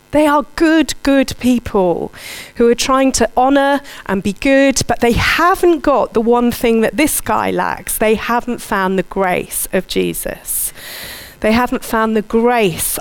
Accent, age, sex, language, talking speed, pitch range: British, 40-59, female, English, 165 wpm, 200-255 Hz